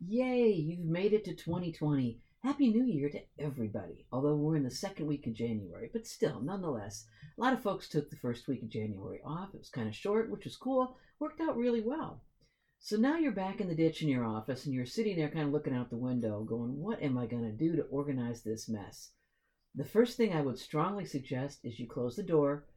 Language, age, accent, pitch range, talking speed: English, 50-69, American, 130-190 Hz, 230 wpm